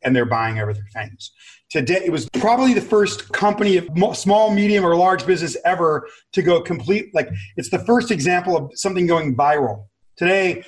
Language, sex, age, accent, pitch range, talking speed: English, male, 40-59, American, 135-195 Hz, 175 wpm